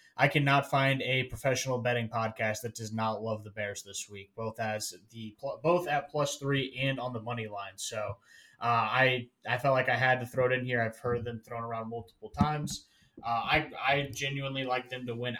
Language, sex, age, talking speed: English, male, 20-39, 215 wpm